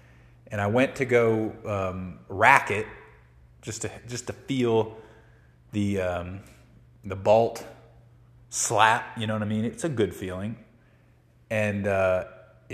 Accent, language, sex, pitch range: American, English, male, 95-120 Hz